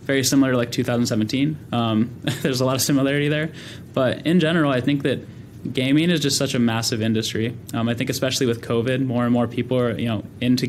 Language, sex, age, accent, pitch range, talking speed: English, male, 10-29, American, 115-135 Hz, 220 wpm